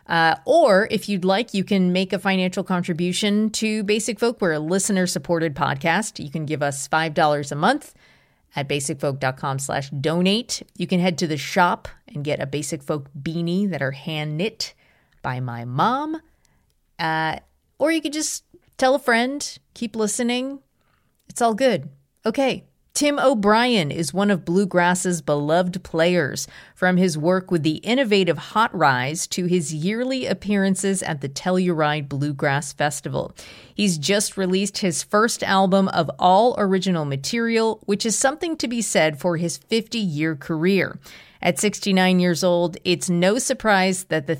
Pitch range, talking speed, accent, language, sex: 155-200 Hz, 155 wpm, American, English, female